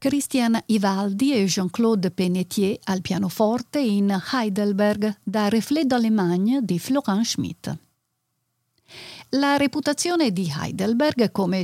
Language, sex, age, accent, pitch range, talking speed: Italian, female, 50-69, native, 190-250 Hz, 105 wpm